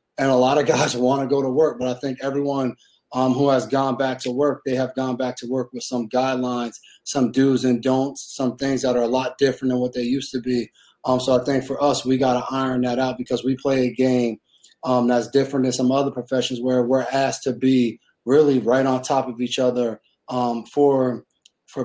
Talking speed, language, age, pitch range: 235 wpm, English, 30-49, 125-135 Hz